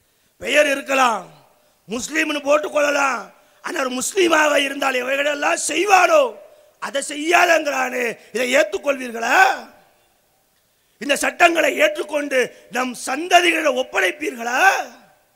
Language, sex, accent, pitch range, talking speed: English, male, Indian, 275-325 Hz, 95 wpm